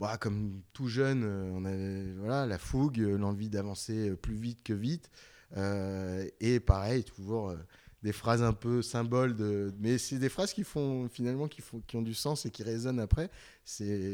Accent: French